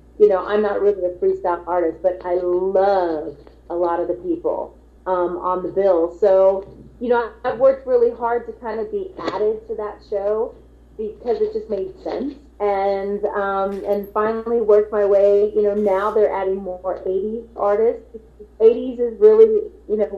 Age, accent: 30-49, American